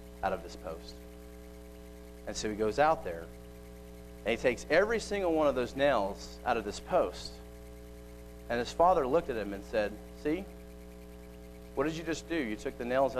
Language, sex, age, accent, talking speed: English, male, 40-59, American, 190 wpm